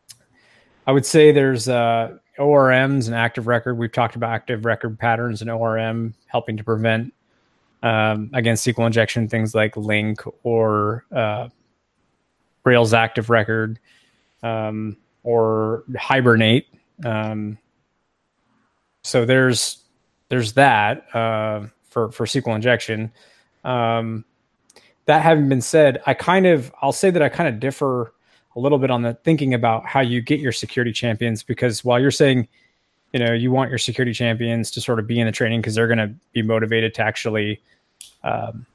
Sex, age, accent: male, 20-39, American